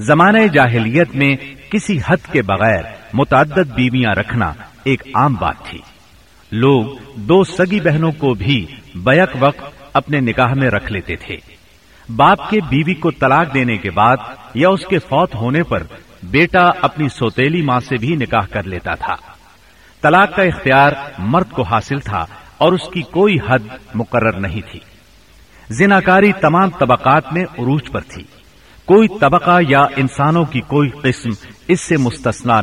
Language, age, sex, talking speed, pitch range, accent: English, 60-79, male, 155 wpm, 115-160 Hz, Indian